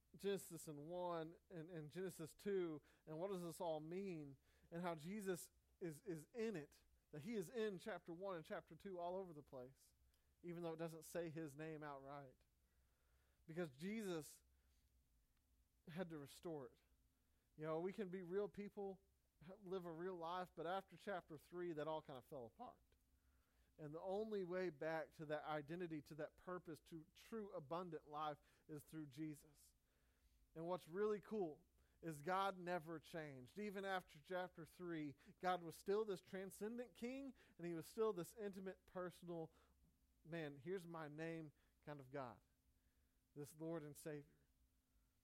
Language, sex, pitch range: English, male, 140-180 Hz